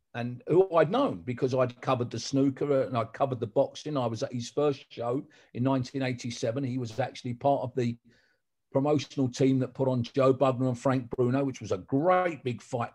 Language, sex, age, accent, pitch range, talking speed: English, male, 40-59, British, 120-150 Hz, 205 wpm